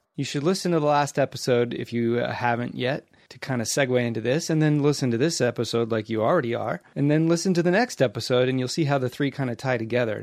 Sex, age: male, 30-49